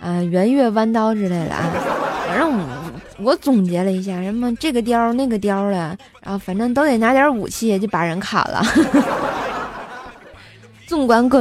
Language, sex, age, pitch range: Chinese, female, 20-39, 210-300 Hz